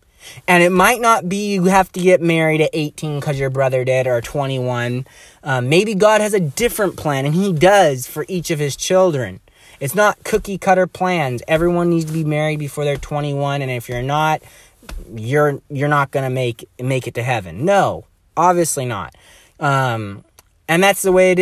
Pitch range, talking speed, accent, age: 145-180 Hz, 195 wpm, American, 20-39